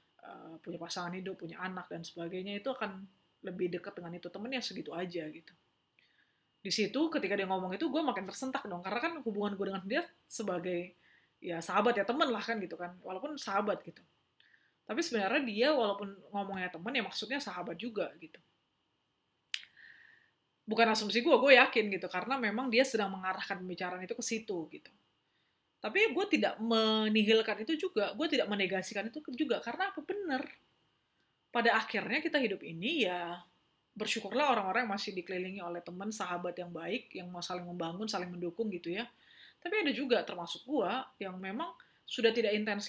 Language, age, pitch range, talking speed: Indonesian, 20-39, 180-245 Hz, 170 wpm